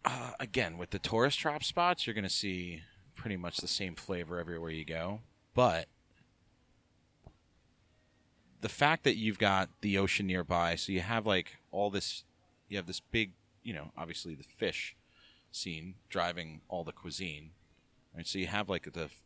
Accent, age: American, 30-49